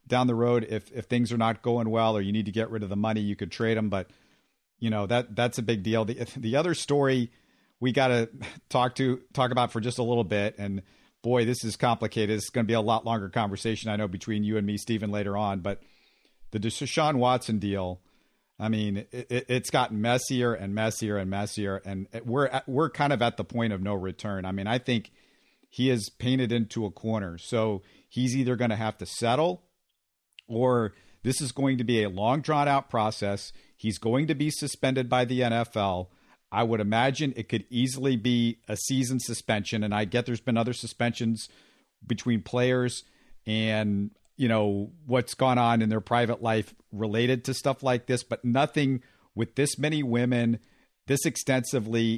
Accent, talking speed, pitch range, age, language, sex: American, 200 wpm, 105-125 Hz, 50-69, English, male